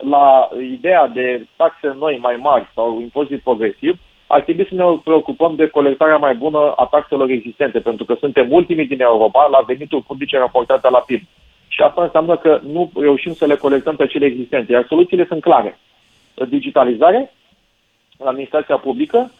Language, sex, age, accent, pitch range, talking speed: Romanian, male, 40-59, native, 130-170 Hz, 165 wpm